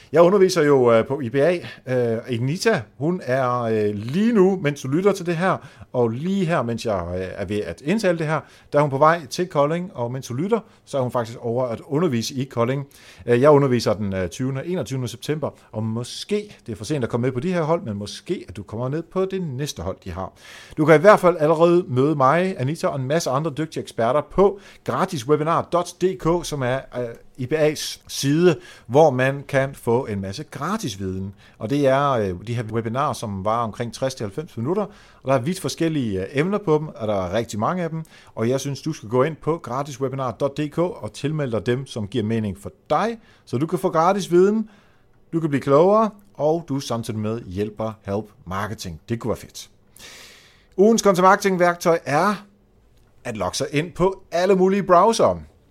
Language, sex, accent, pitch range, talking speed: Danish, male, native, 115-170 Hz, 195 wpm